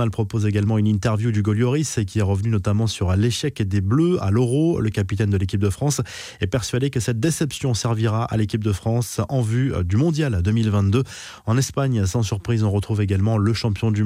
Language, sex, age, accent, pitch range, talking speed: French, male, 20-39, French, 105-130 Hz, 200 wpm